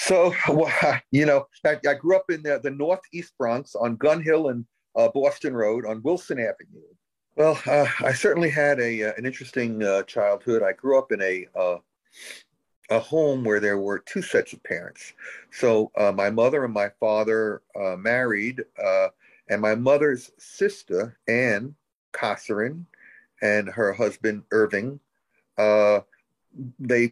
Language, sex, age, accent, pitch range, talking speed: English, male, 50-69, American, 105-140 Hz, 160 wpm